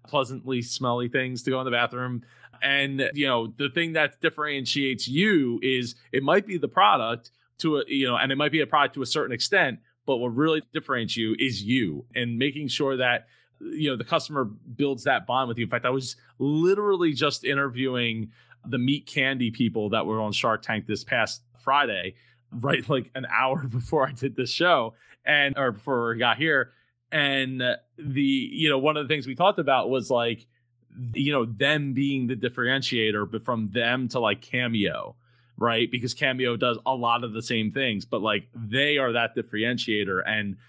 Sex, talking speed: male, 195 wpm